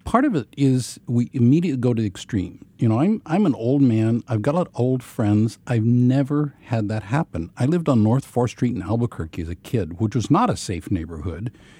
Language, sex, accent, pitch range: English, male, American, 100-135 Hz